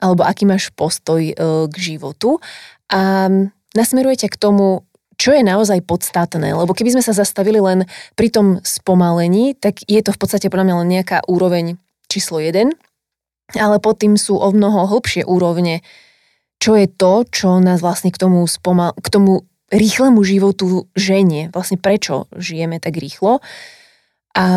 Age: 20-39